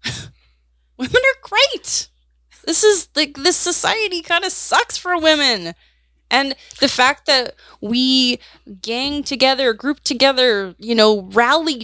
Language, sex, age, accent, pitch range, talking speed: English, female, 20-39, American, 190-275 Hz, 125 wpm